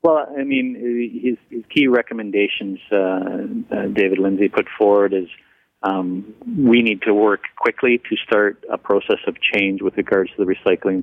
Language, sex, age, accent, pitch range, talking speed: English, male, 40-59, American, 90-105 Hz, 165 wpm